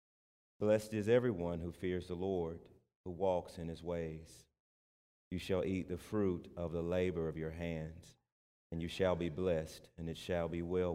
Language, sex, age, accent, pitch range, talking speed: English, male, 40-59, American, 80-90 Hz, 180 wpm